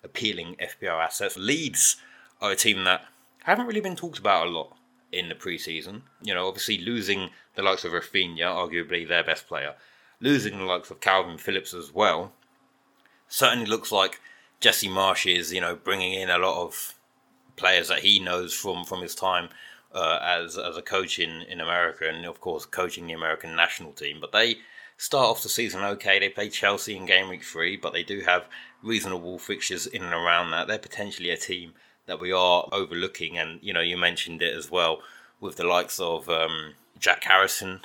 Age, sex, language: 30-49, male, English